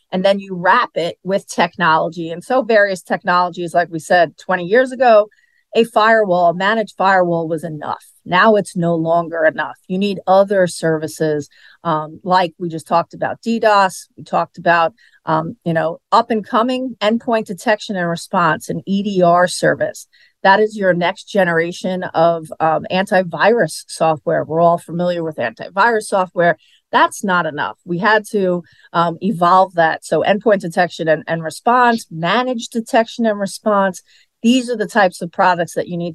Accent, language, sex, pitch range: American, English, female, 165-210 Hz